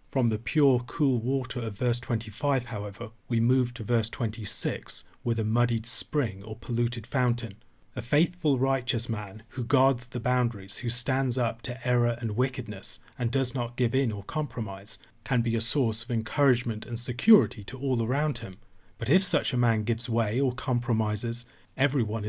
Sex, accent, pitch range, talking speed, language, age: male, British, 110-130 Hz, 175 wpm, English, 40-59